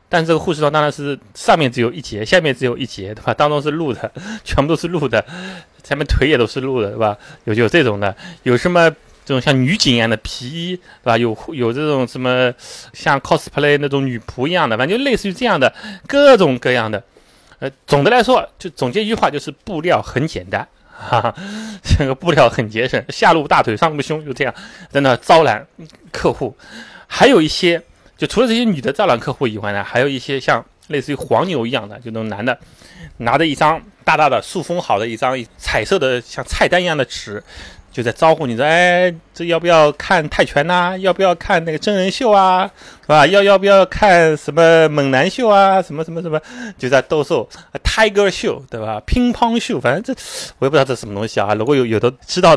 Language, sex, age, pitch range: Chinese, male, 30-49, 125-180 Hz